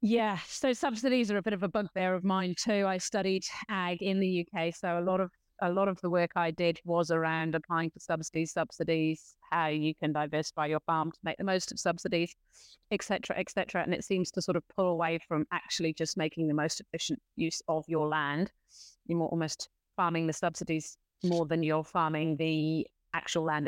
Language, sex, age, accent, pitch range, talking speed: English, female, 30-49, British, 165-205 Hz, 210 wpm